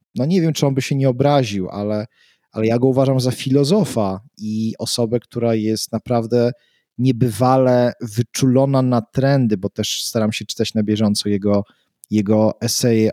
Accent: native